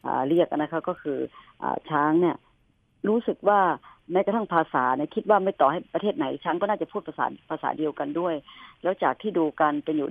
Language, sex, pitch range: Thai, male, 150-200 Hz